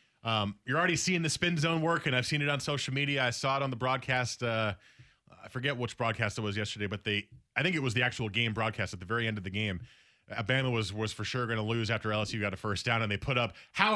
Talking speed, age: 280 wpm, 30-49